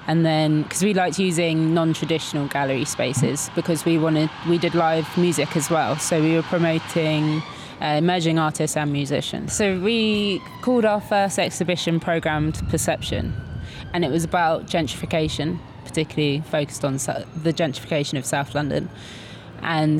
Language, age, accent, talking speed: English, 20-39, British, 145 wpm